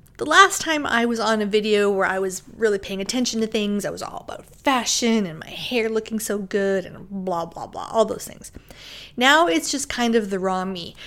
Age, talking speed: 30-49, 230 wpm